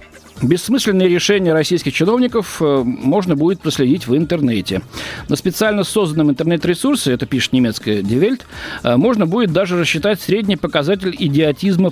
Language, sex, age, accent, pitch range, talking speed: Russian, male, 50-69, native, 125-190 Hz, 120 wpm